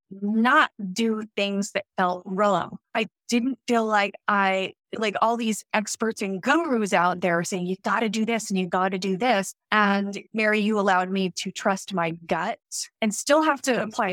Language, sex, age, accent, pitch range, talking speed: English, female, 20-39, American, 185-225 Hz, 185 wpm